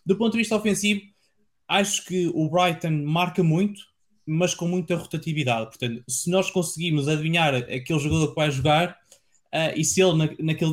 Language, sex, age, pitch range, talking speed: Portuguese, male, 20-39, 145-170 Hz, 175 wpm